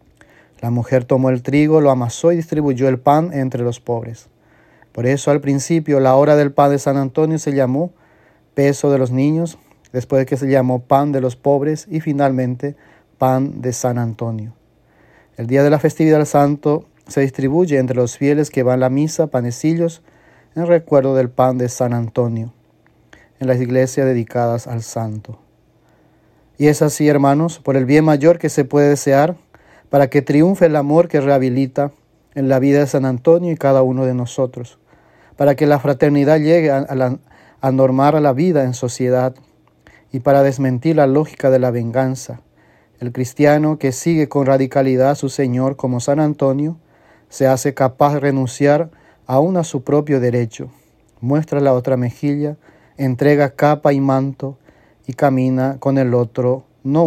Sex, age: male, 30-49